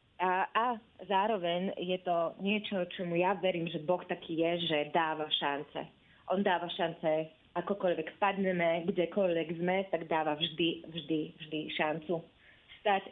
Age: 30-49